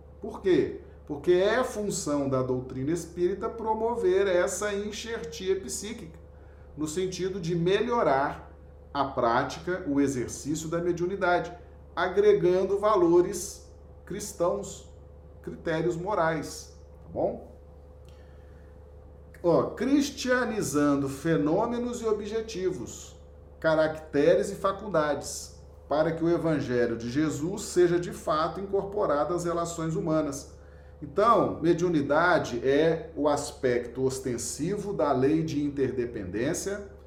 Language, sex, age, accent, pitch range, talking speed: Portuguese, male, 40-59, Brazilian, 135-195 Hz, 100 wpm